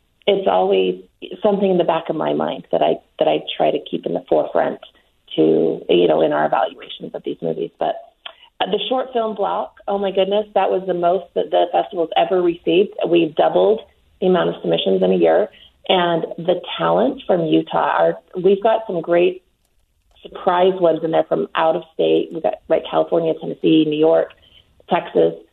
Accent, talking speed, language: American, 185 wpm, English